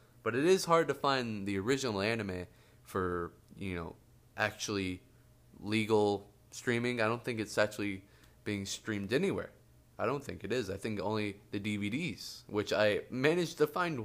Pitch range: 100-125 Hz